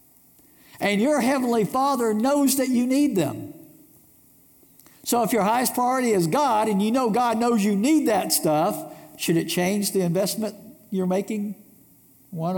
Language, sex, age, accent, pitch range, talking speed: English, male, 60-79, American, 145-215 Hz, 155 wpm